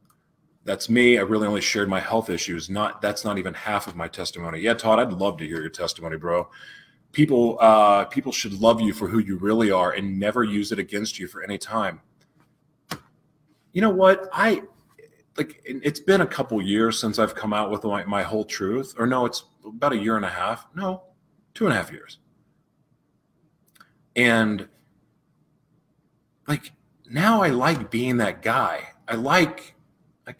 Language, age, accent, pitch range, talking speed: English, 30-49, American, 105-155 Hz, 180 wpm